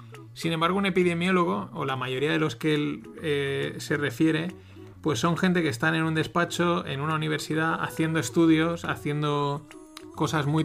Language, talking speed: Spanish, 170 wpm